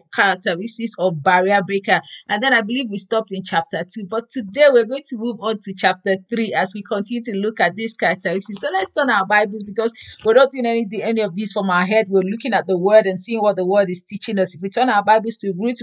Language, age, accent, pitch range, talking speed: English, 40-59, Nigerian, 190-245 Hz, 250 wpm